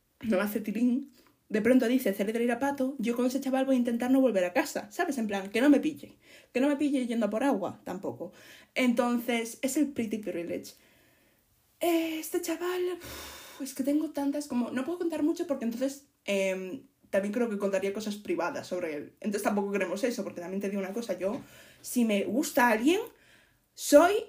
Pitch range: 205-290 Hz